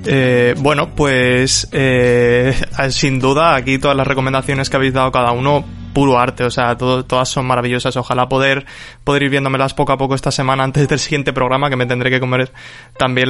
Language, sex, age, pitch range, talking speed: Spanish, male, 20-39, 125-145 Hz, 195 wpm